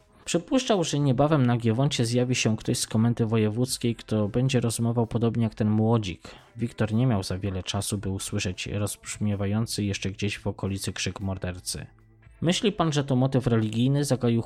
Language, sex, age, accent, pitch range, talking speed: Polish, male, 20-39, native, 105-130 Hz, 165 wpm